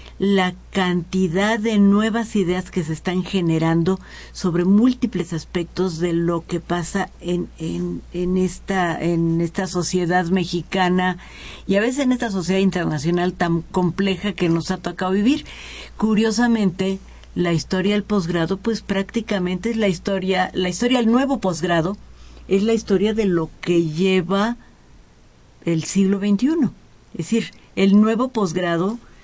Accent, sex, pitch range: Mexican, female, 175-205 Hz